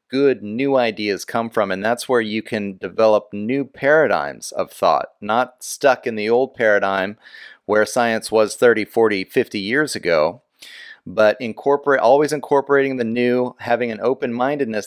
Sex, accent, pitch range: male, American, 105-130 Hz